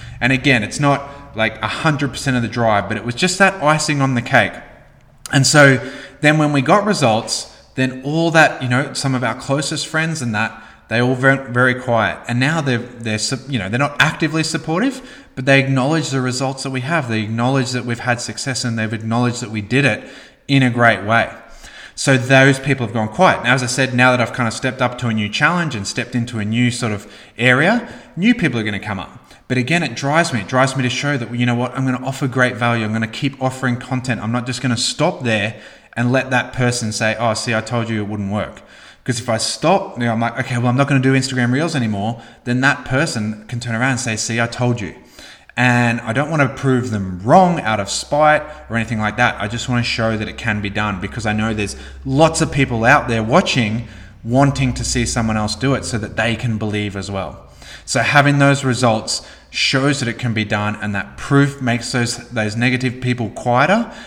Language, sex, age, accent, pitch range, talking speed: English, male, 20-39, Australian, 110-135 Hz, 240 wpm